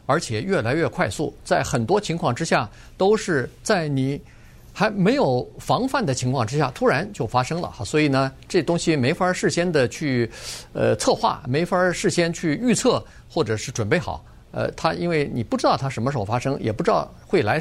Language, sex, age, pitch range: Chinese, male, 50-69, 120-175 Hz